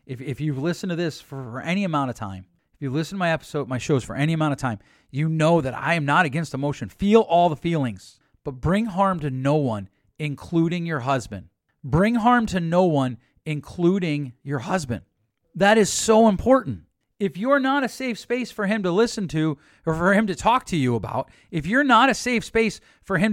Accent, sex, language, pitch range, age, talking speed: American, male, English, 155-235 Hz, 40-59, 215 wpm